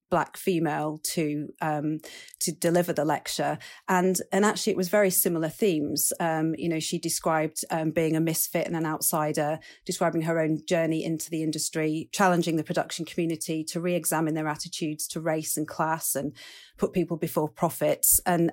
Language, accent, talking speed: English, British, 170 wpm